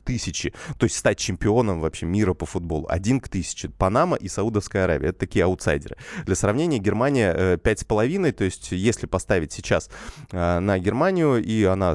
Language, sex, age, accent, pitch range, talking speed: Russian, male, 30-49, native, 95-115 Hz, 170 wpm